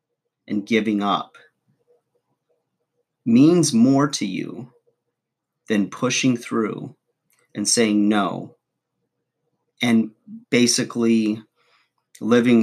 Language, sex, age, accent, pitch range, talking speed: English, male, 40-59, American, 110-130 Hz, 75 wpm